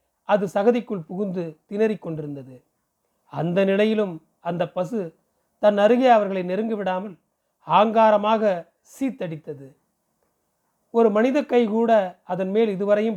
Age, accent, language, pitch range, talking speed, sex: 40-59, native, Tamil, 170-220 Hz, 95 wpm, male